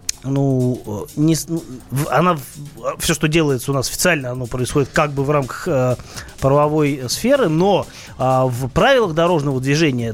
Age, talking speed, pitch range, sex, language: 20-39, 130 wpm, 135-170 Hz, male, Russian